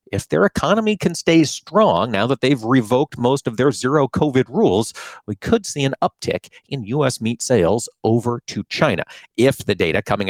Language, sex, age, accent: English, male, 40-59, American